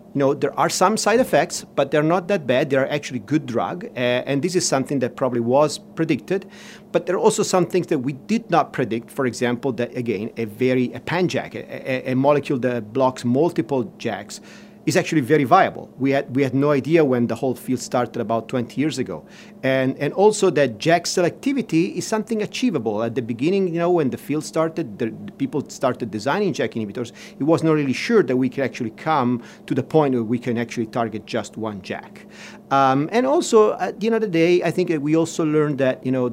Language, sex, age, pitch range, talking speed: Swedish, male, 40-59, 120-170 Hz, 220 wpm